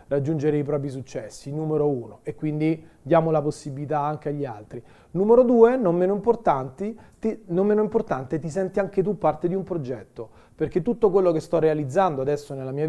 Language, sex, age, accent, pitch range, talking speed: Italian, male, 30-49, native, 145-180 Hz, 180 wpm